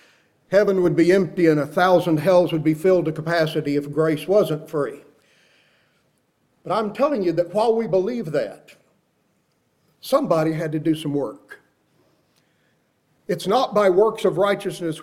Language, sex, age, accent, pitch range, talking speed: English, male, 50-69, American, 165-215 Hz, 150 wpm